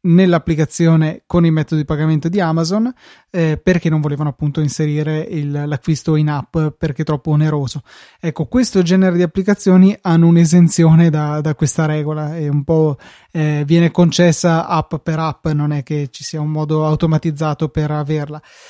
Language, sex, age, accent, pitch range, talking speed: Italian, male, 20-39, native, 155-175 Hz, 165 wpm